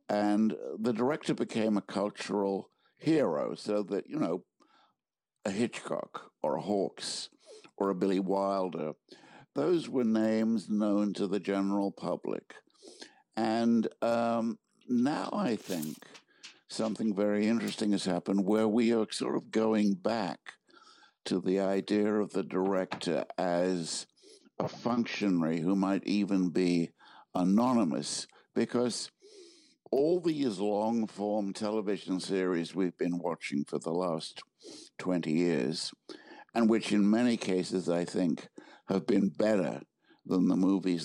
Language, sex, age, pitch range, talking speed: English, male, 60-79, 95-115 Hz, 125 wpm